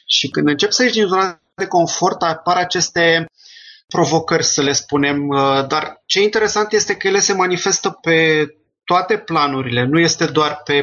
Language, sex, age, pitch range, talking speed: Romanian, male, 20-39, 140-170 Hz, 165 wpm